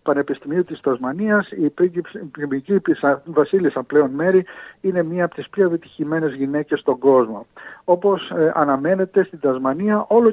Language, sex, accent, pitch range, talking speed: Greek, male, native, 140-175 Hz, 135 wpm